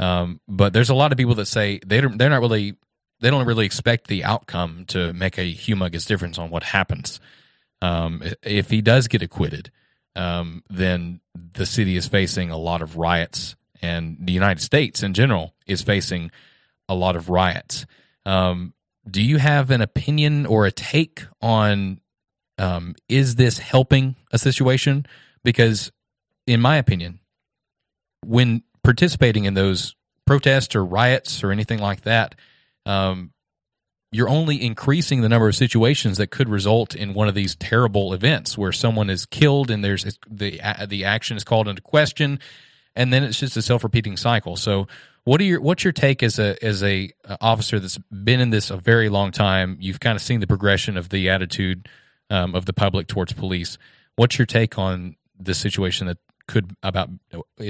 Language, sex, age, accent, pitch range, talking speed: English, male, 30-49, American, 95-120 Hz, 175 wpm